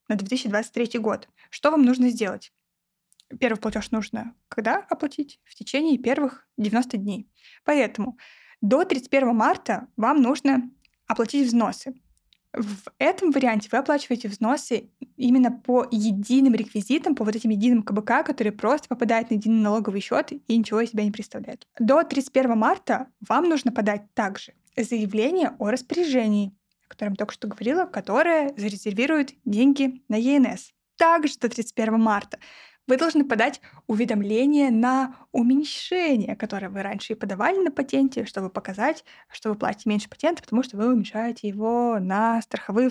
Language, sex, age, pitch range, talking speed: Russian, female, 20-39, 210-265 Hz, 145 wpm